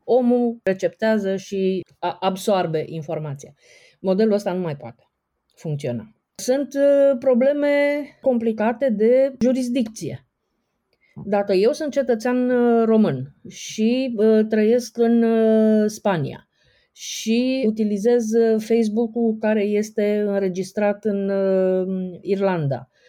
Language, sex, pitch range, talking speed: Romanian, female, 175-225 Hz, 85 wpm